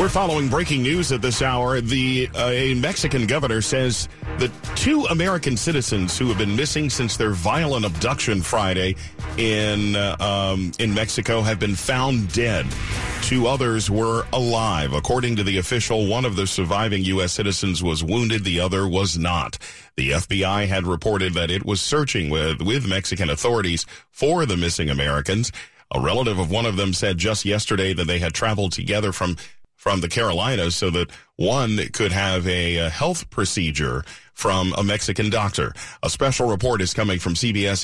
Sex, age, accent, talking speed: male, 40-59, American, 170 wpm